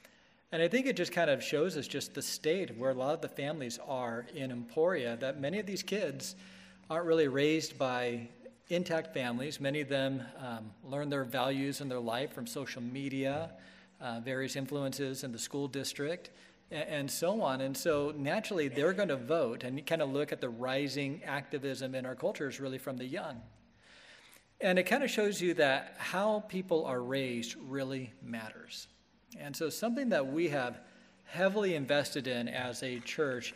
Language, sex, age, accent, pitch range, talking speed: English, male, 40-59, American, 135-170 Hz, 185 wpm